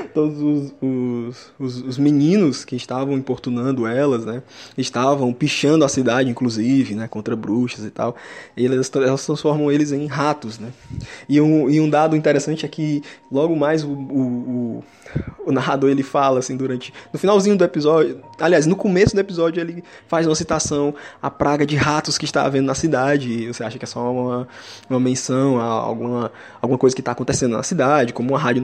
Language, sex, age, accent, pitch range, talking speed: English, male, 20-39, Brazilian, 125-150 Hz, 185 wpm